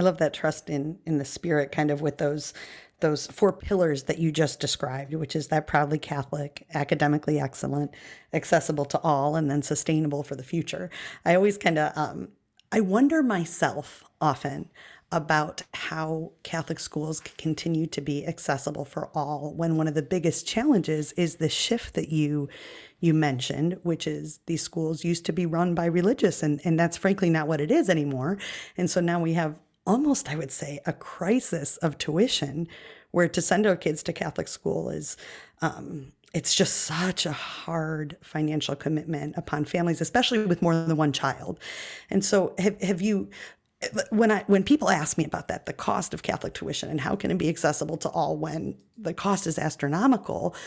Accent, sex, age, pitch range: American, female, 40-59, 150-180 Hz